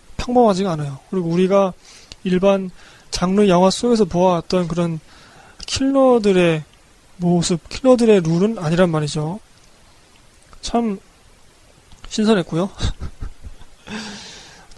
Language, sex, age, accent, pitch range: Korean, male, 20-39, native, 175-220 Hz